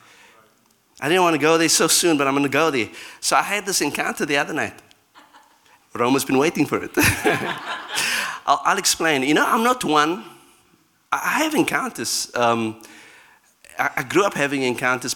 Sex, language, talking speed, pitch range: male, English, 170 wpm, 120-155 Hz